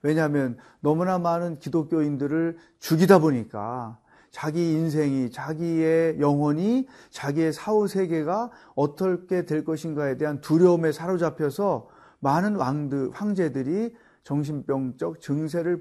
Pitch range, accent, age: 135-180 Hz, native, 40-59